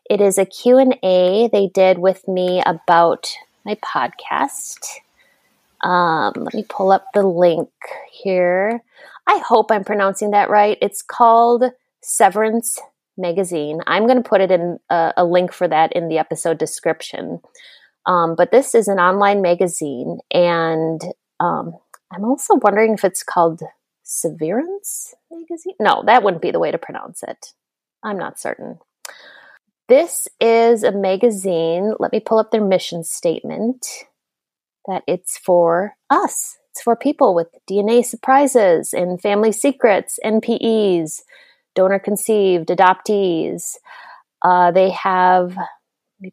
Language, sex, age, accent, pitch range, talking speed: English, female, 30-49, American, 180-235 Hz, 135 wpm